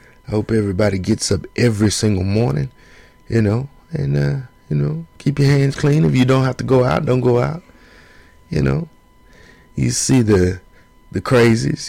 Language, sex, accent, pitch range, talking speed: English, male, American, 95-125 Hz, 175 wpm